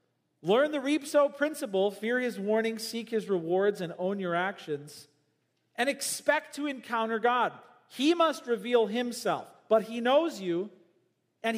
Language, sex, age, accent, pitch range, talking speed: English, male, 40-59, American, 170-265 Hz, 145 wpm